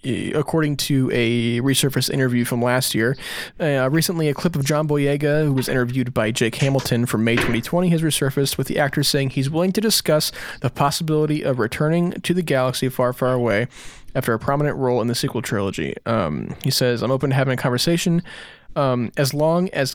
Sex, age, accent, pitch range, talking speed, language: male, 20-39, American, 125-170 Hz, 195 wpm, English